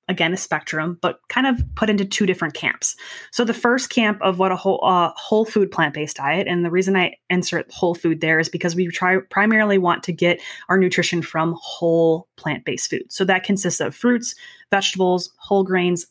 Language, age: English, 20-39